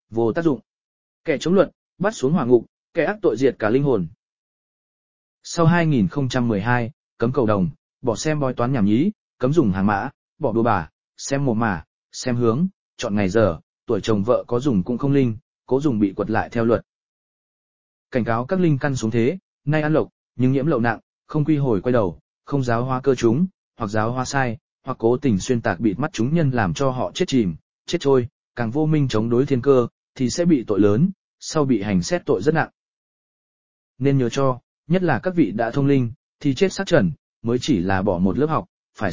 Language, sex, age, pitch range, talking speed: Vietnamese, male, 20-39, 115-155 Hz, 220 wpm